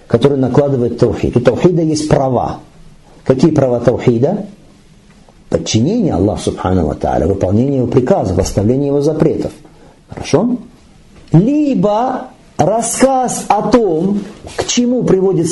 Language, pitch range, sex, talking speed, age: Russian, 125-165 Hz, male, 100 wpm, 50-69